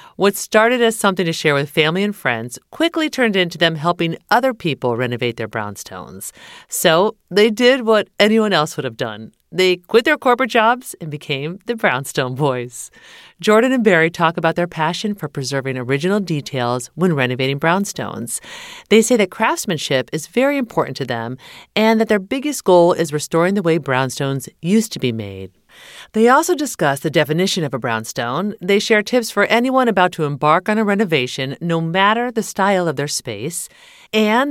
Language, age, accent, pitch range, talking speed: English, 40-59, American, 145-225 Hz, 180 wpm